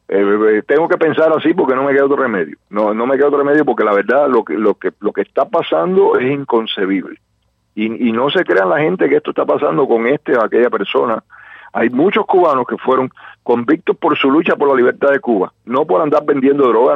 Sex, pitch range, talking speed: male, 140-190 Hz, 225 wpm